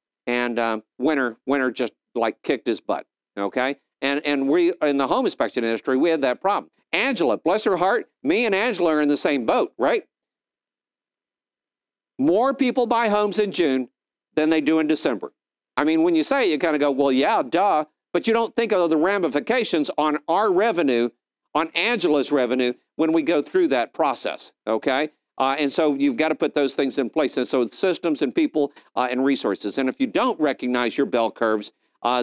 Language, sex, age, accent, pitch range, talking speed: English, male, 50-69, American, 135-205 Hz, 200 wpm